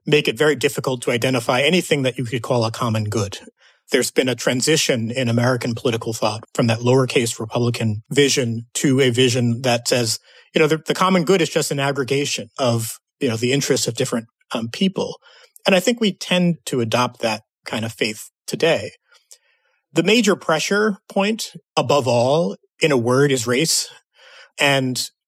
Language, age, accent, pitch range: English, 30-49, American, 120-160 Hz